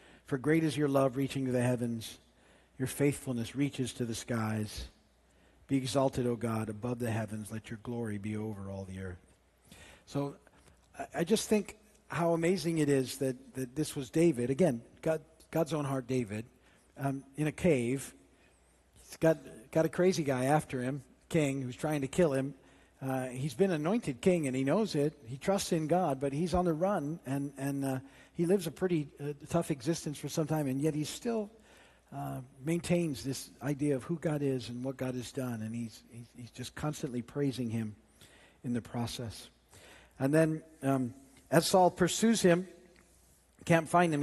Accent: American